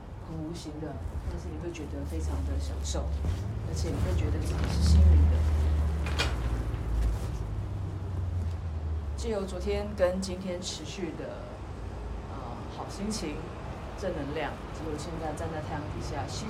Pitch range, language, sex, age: 75-95 Hz, Chinese, female, 30-49